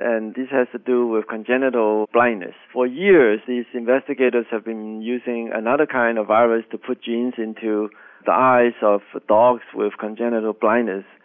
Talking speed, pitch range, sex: 160 wpm, 110-125 Hz, male